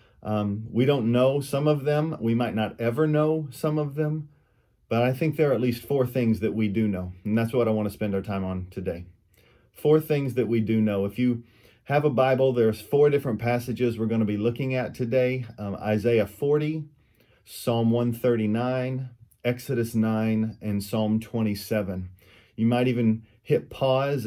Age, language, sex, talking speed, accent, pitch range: 40-59, English, male, 190 wpm, American, 105-125 Hz